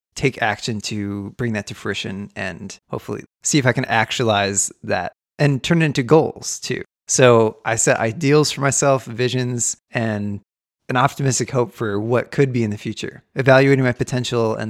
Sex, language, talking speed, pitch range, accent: male, English, 175 wpm, 110-140 Hz, American